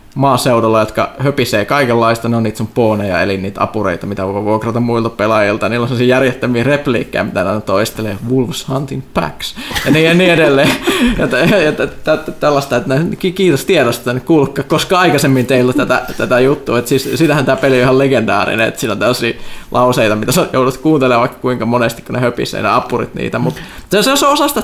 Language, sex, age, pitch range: Finnish, male, 20-39, 115-140 Hz